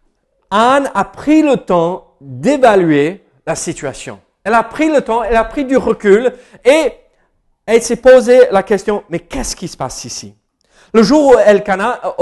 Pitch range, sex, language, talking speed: 160-230 Hz, male, French, 175 wpm